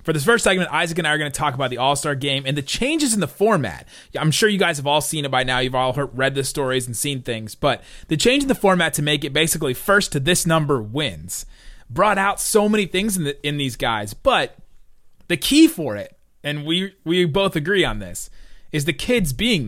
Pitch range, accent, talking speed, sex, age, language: 135-180 Hz, American, 245 wpm, male, 30-49, English